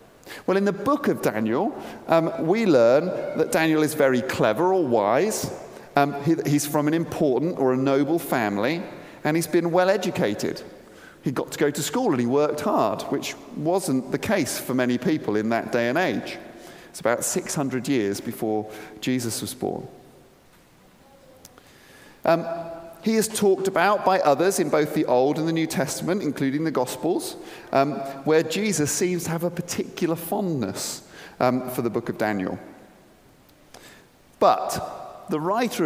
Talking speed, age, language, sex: 160 wpm, 40-59, English, male